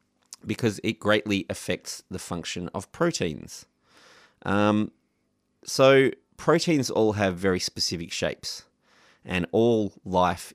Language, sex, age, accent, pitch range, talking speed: English, male, 30-49, Australian, 90-115 Hz, 110 wpm